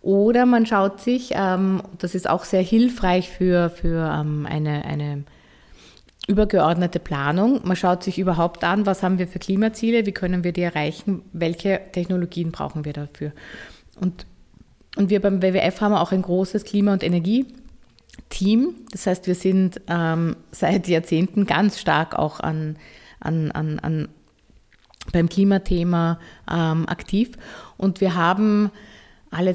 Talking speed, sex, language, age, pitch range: 140 wpm, female, German, 20-39, 165-205 Hz